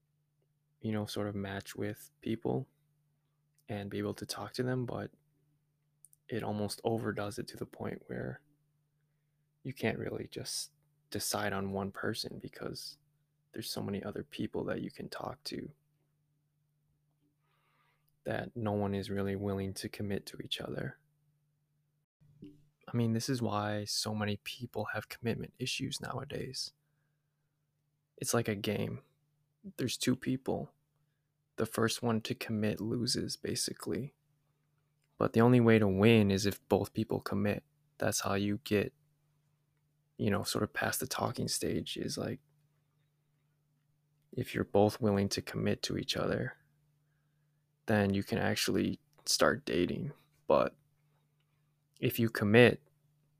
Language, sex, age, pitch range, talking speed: English, male, 20-39, 105-150 Hz, 140 wpm